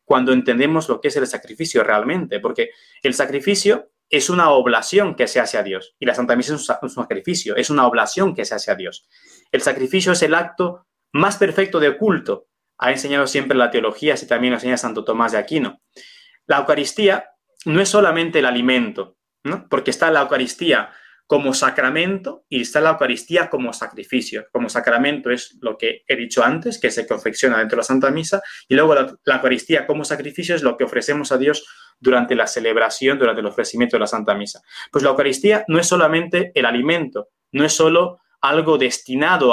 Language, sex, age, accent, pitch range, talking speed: Spanish, male, 30-49, Mexican, 130-200 Hz, 190 wpm